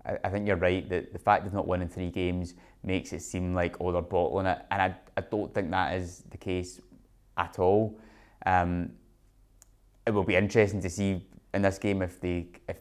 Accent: British